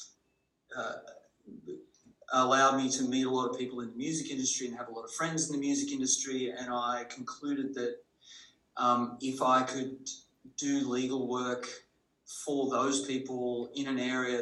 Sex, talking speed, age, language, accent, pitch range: male, 165 wpm, 30-49, English, Australian, 120-130 Hz